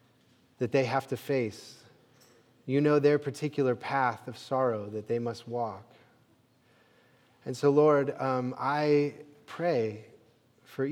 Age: 30-49